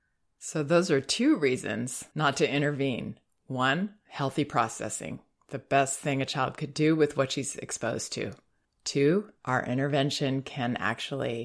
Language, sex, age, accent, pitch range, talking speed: English, female, 30-49, American, 125-150 Hz, 145 wpm